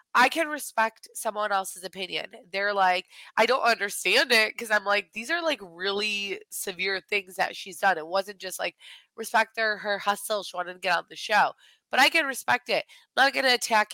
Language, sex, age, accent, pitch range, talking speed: English, female, 20-39, American, 180-225 Hz, 210 wpm